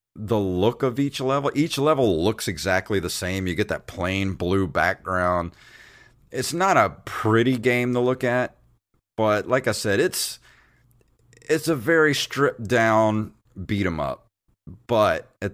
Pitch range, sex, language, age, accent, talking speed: 90-115 Hz, male, English, 30-49, American, 145 wpm